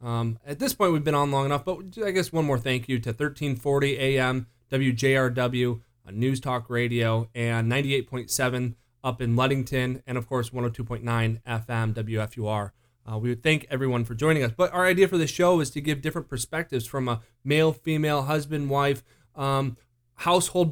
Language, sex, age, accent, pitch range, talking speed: English, male, 30-49, American, 120-160 Hz, 180 wpm